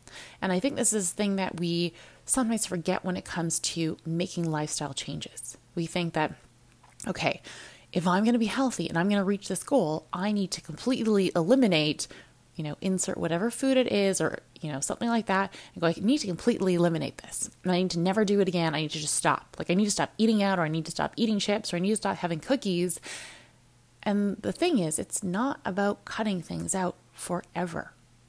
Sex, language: female, English